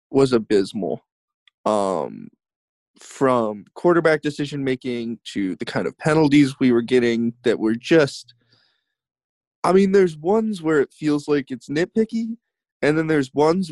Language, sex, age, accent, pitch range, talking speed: English, male, 20-39, American, 120-165 Hz, 135 wpm